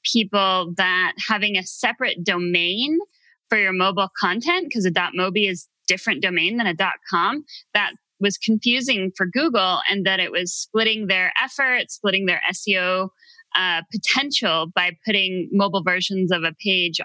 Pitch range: 180-230 Hz